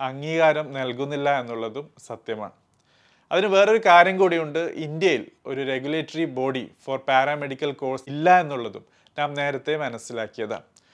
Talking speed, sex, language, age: 110 wpm, male, Malayalam, 30-49